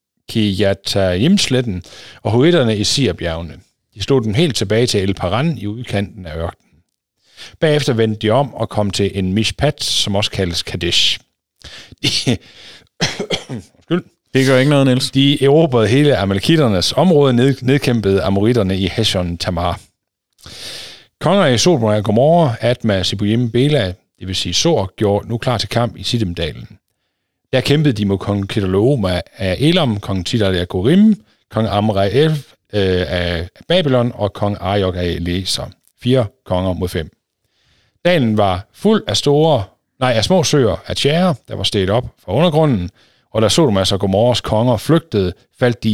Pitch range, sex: 95-130 Hz, male